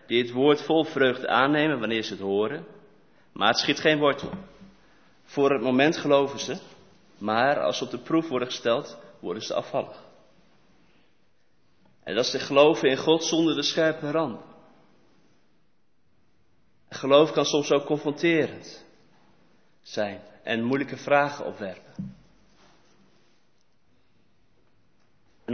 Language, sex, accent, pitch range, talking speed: Dutch, male, Dutch, 120-150 Hz, 125 wpm